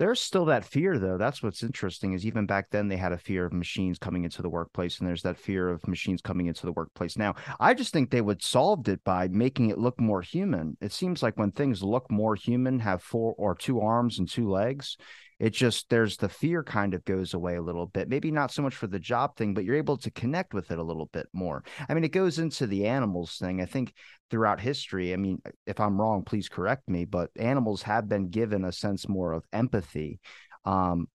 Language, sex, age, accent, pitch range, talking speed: English, male, 30-49, American, 95-130 Hz, 240 wpm